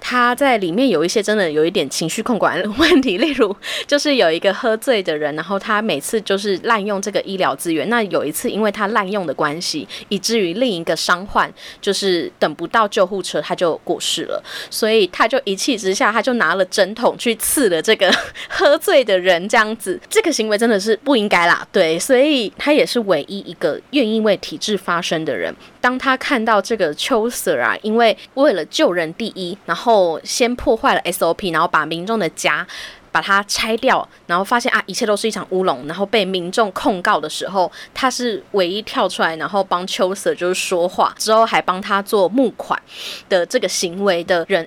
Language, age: Chinese, 20-39